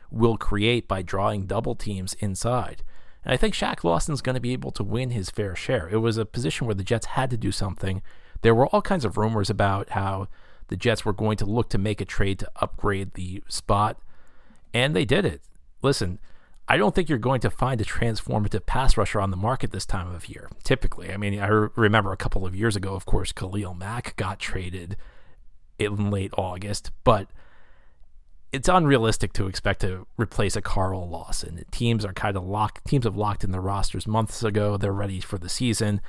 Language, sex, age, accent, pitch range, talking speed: English, male, 40-59, American, 95-120 Hz, 205 wpm